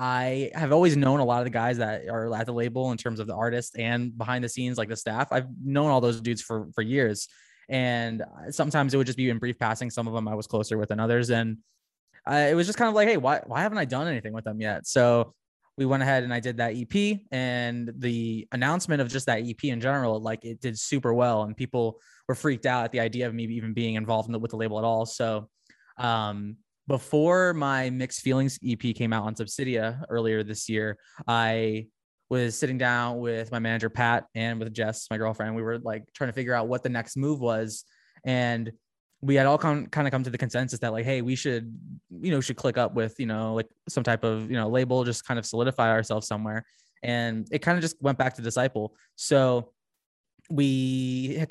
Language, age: English, 20-39